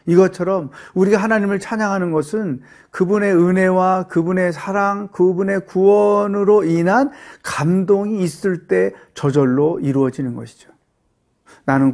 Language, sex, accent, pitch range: Korean, male, native, 150-195 Hz